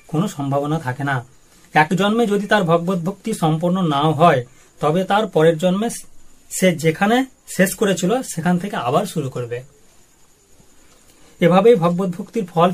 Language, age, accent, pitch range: Bengali, 30-49, native, 150-185 Hz